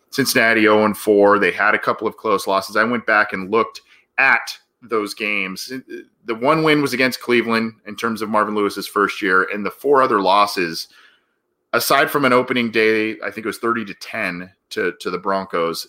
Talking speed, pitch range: 190 wpm, 100-125 Hz